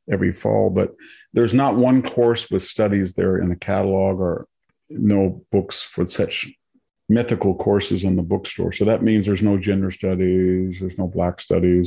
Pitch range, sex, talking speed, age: 90-105 Hz, male, 170 wpm, 50-69